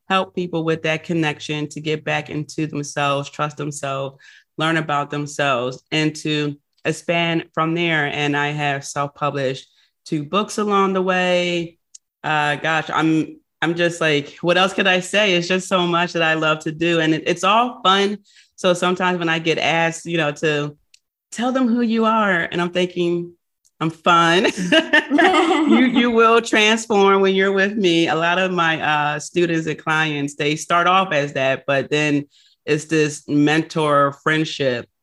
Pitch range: 145-180 Hz